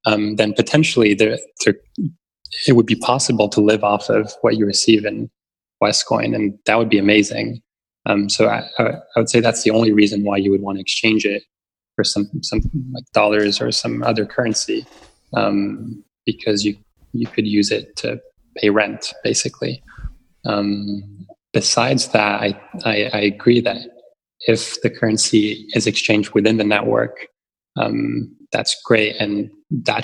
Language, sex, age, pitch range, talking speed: English, male, 20-39, 105-115 Hz, 160 wpm